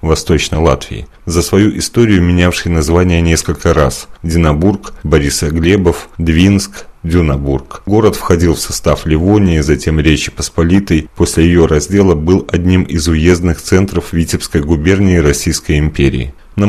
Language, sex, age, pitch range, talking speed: Russian, male, 30-49, 75-90 Hz, 125 wpm